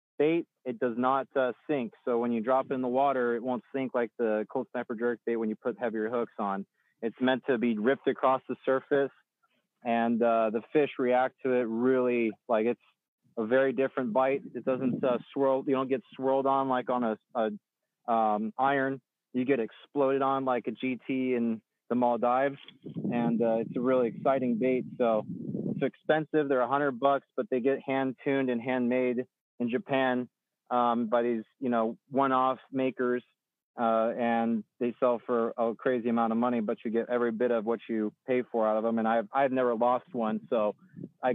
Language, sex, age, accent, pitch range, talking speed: English, male, 30-49, American, 120-130 Hz, 195 wpm